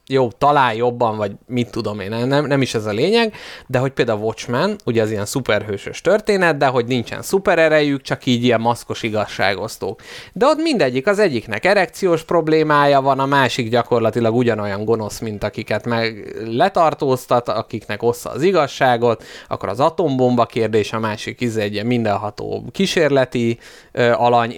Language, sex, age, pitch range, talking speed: Hungarian, male, 20-39, 110-145 Hz, 160 wpm